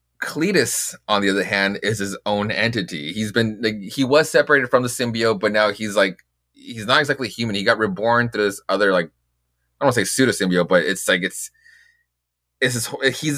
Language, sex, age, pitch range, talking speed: English, male, 20-39, 100-140 Hz, 210 wpm